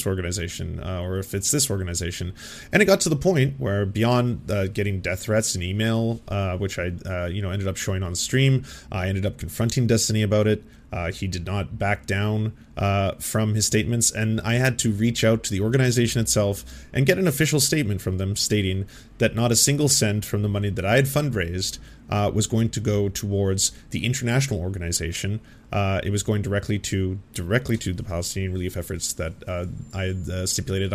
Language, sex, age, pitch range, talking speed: English, male, 30-49, 95-120 Hz, 205 wpm